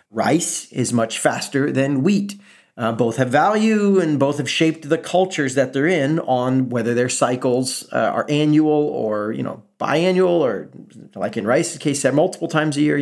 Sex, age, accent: male, 40-59, American